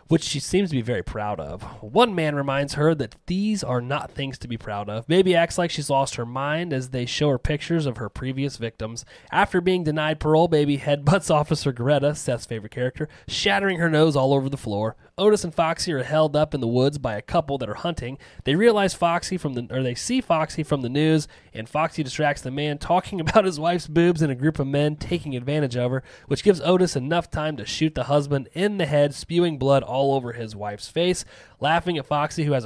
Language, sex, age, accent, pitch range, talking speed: English, male, 20-39, American, 125-160 Hz, 230 wpm